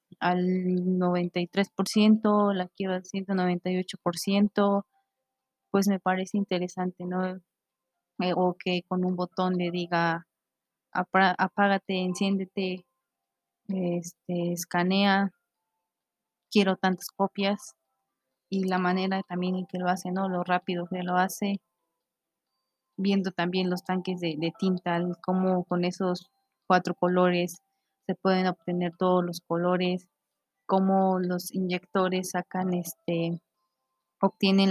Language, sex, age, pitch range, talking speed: Spanish, female, 20-39, 175-190 Hz, 110 wpm